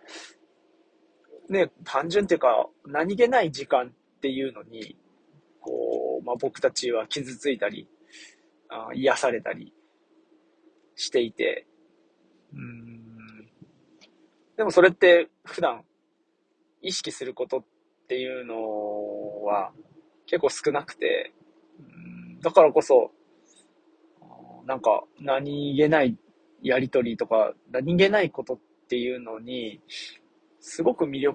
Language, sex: Japanese, male